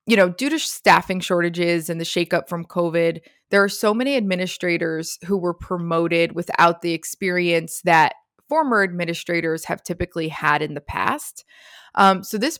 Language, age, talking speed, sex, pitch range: English, 20-39, 160 wpm, female, 170-220 Hz